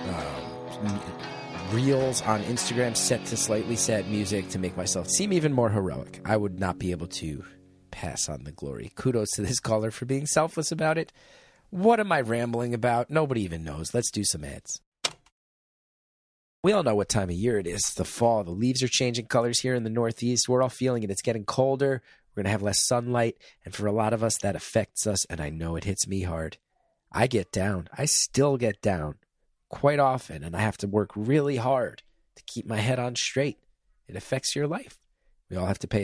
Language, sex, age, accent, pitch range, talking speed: English, male, 30-49, American, 95-125 Hz, 210 wpm